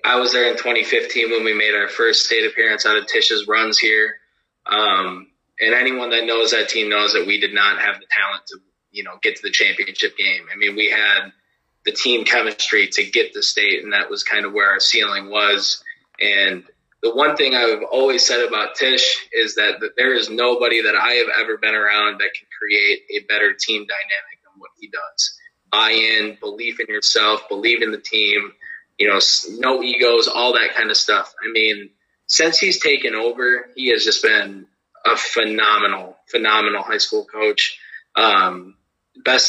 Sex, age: male, 20-39